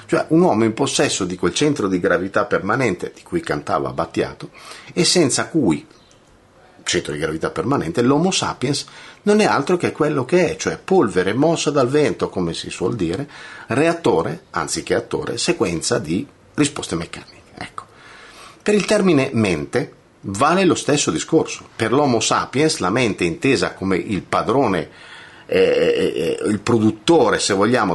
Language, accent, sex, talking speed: Italian, native, male, 145 wpm